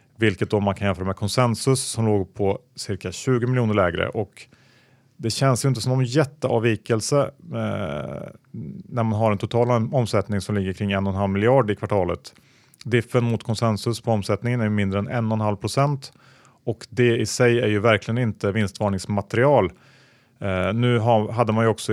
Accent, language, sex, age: Norwegian, Swedish, male, 30-49